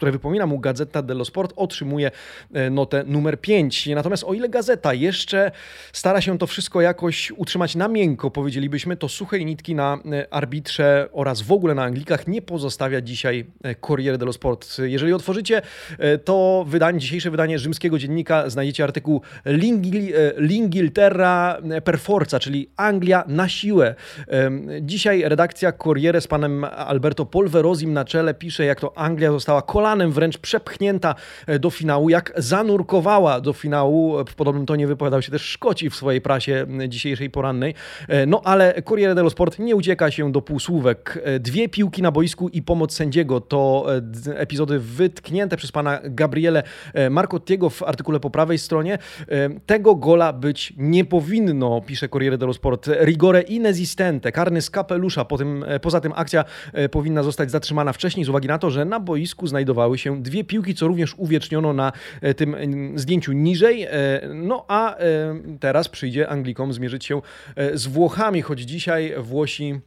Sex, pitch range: male, 140-175 Hz